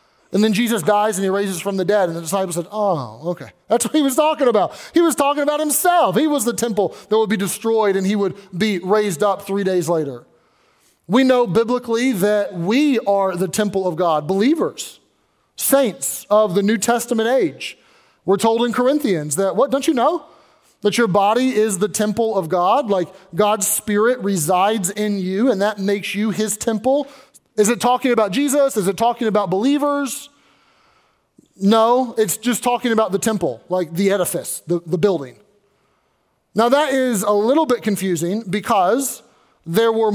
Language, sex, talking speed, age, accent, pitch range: English, male, 185 wpm, 30-49, American, 195-235 Hz